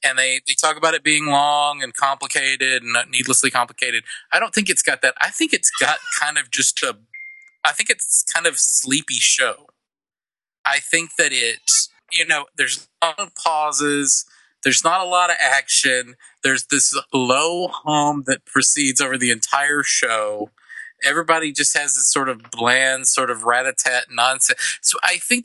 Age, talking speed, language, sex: 30-49, 170 wpm, English, male